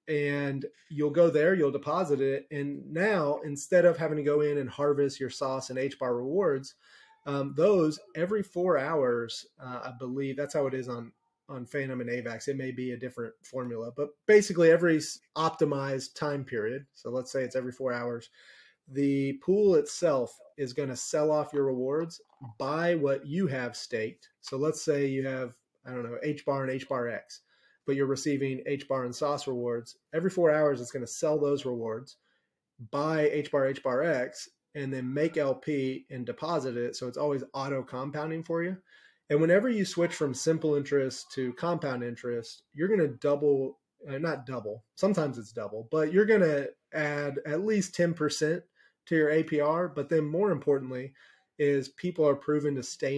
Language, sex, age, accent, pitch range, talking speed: English, male, 30-49, American, 130-155 Hz, 180 wpm